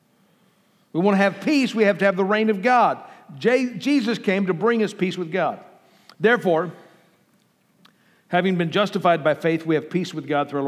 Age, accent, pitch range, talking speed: 50-69, American, 170-225 Hz, 190 wpm